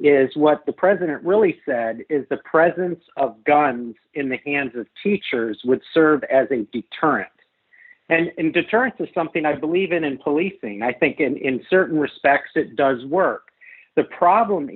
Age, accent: 50-69, American